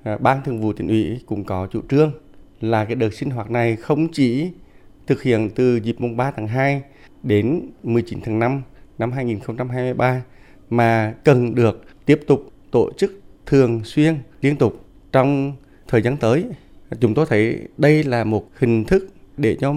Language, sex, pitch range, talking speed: Vietnamese, male, 105-135 Hz, 175 wpm